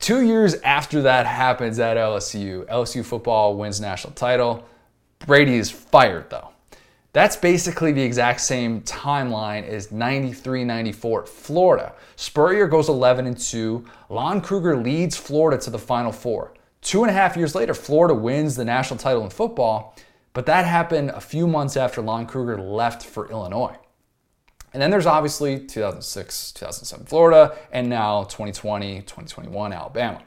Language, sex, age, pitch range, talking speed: English, male, 20-39, 110-145 Hz, 145 wpm